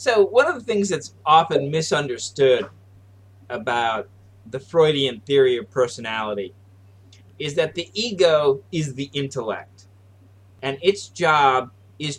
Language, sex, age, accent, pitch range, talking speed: English, male, 30-49, American, 105-160 Hz, 125 wpm